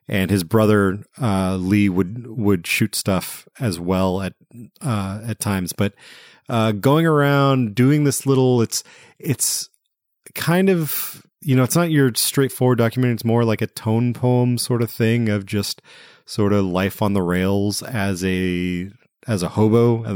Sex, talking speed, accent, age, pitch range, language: male, 165 wpm, American, 30-49, 95-120 Hz, English